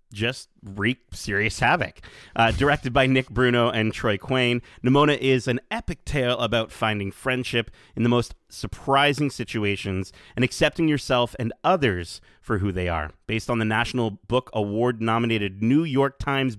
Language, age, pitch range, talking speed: English, 30-49, 110-145 Hz, 155 wpm